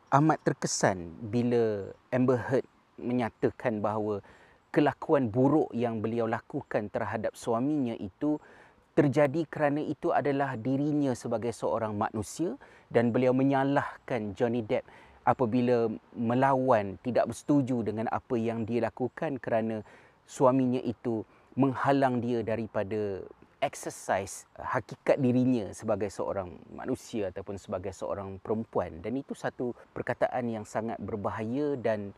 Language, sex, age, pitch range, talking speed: Malay, male, 30-49, 110-135 Hz, 115 wpm